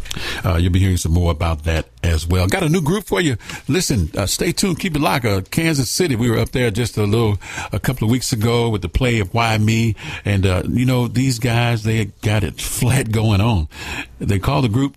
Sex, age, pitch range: male, 50-69, 85-115 Hz